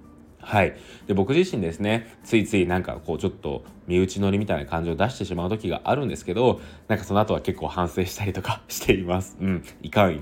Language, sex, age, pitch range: Japanese, male, 20-39, 85-110 Hz